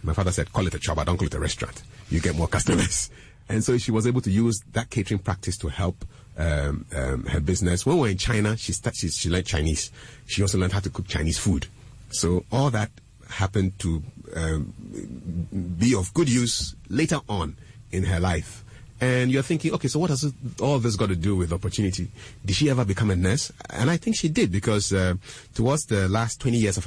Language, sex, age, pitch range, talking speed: English, male, 30-49, 95-120 Hz, 225 wpm